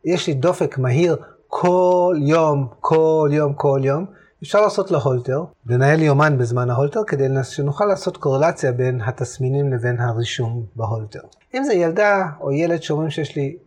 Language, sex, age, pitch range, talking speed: Hebrew, male, 30-49, 135-175 Hz, 155 wpm